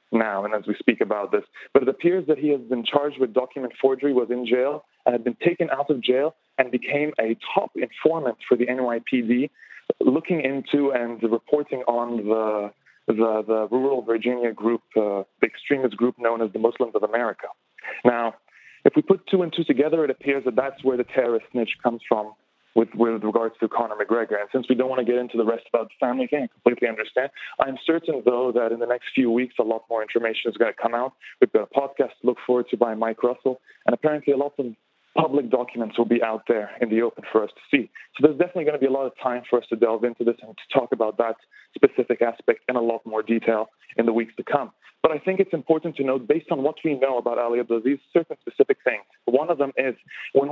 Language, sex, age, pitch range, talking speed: English, male, 30-49, 115-145 Hz, 240 wpm